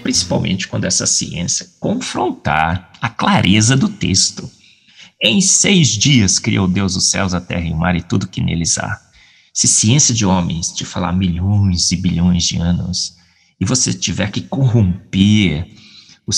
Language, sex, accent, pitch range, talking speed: Portuguese, male, Brazilian, 90-110 Hz, 160 wpm